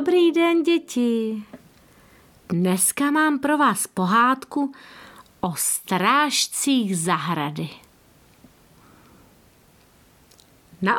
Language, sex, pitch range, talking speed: Czech, female, 190-285 Hz, 65 wpm